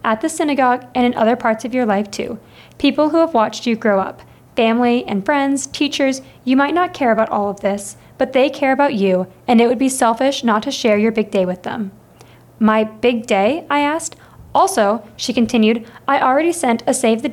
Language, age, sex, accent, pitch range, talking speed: English, 20-39, female, American, 215-270 Hz, 215 wpm